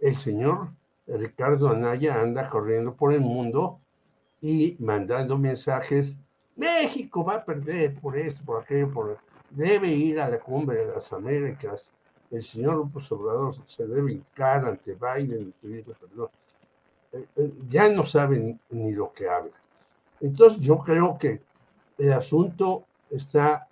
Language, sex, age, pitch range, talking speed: Spanish, male, 60-79, 120-155 Hz, 135 wpm